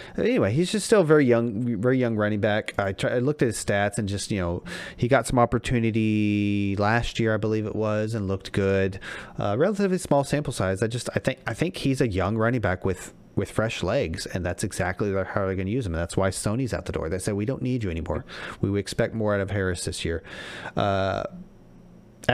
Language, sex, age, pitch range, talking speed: English, male, 30-49, 90-115 Hz, 235 wpm